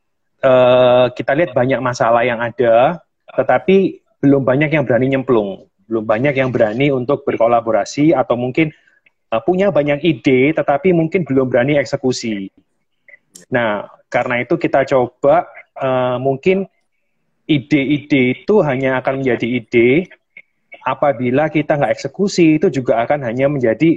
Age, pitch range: 30-49, 120-145 Hz